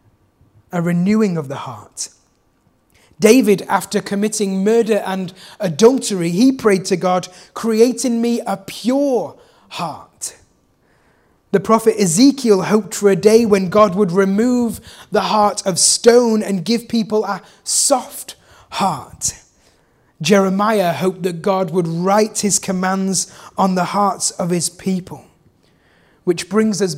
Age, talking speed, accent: 30-49, 130 wpm, British